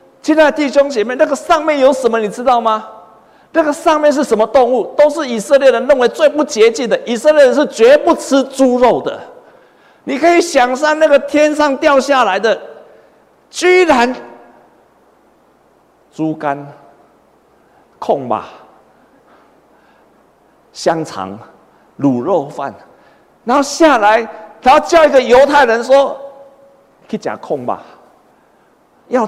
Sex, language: male, Chinese